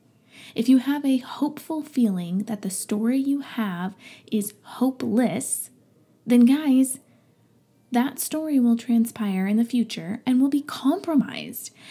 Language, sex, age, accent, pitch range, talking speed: English, female, 20-39, American, 210-260 Hz, 130 wpm